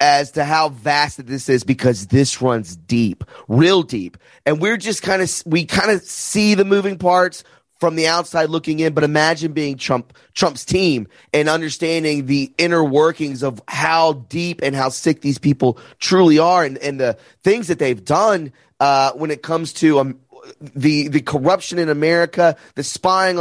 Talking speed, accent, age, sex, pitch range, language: 180 wpm, American, 30-49, male, 140-180 Hz, English